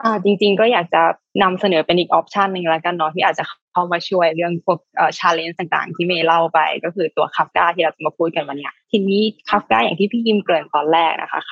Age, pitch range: 20-39, 165-200 Hz